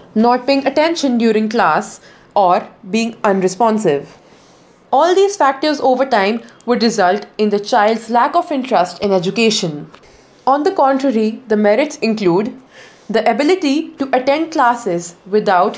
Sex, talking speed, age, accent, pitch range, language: female, 135 wpm, 20-39, Indian, 210-270 Hz, English